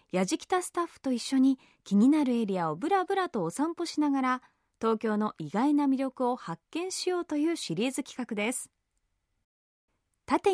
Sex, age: female, 20-39